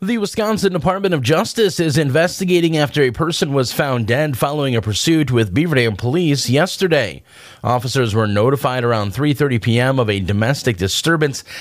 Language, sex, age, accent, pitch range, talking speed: English, male, 30-49, American, 120-155 Hz, 155 wpm